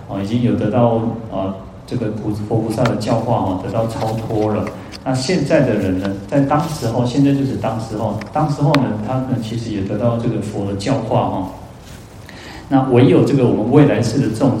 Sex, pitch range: male, 110-135 Hz